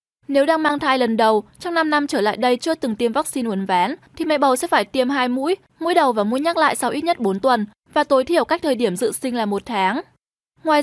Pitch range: 235-310 Hz